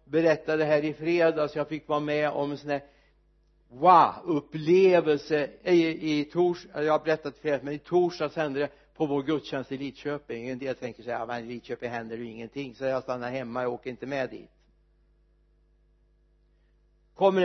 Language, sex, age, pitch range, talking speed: Swedish, male, 60-79, 130-155 Hz, 170 wpm